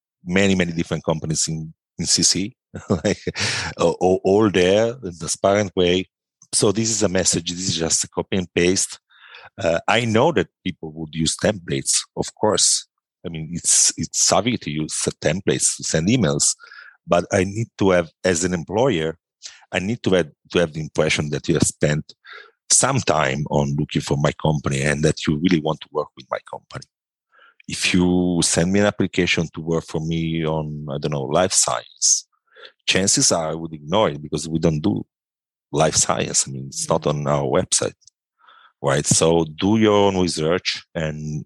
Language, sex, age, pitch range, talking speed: English, male, 50-69, 75-90 Hz, 185 wpm